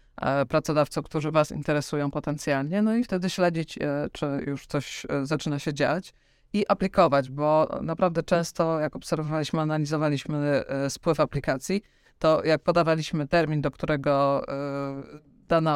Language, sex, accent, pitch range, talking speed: Polish, female, native, 145-165 Hz, 120 wpm